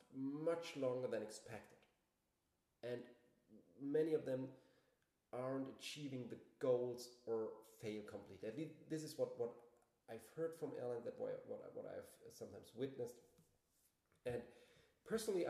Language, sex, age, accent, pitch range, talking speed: English, male, 30-49, German, 125-170 Hz, 130 wpm